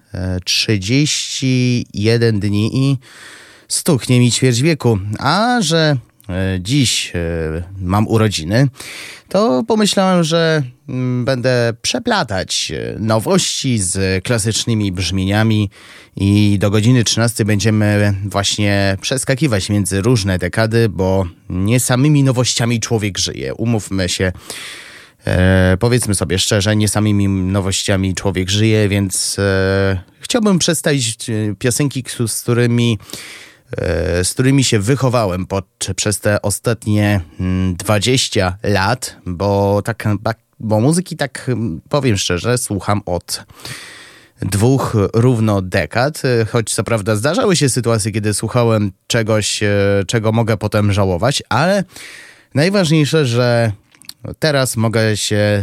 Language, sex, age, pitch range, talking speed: Polish, male, 20-39, 100-125 Hz, 105 wpm